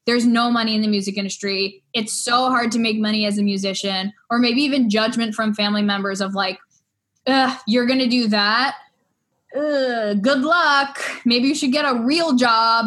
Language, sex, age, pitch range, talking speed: English, female, 10-29, 215-265 Hz, 180 wpm